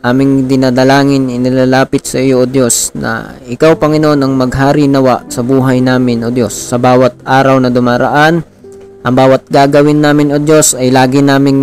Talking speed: 160 wpm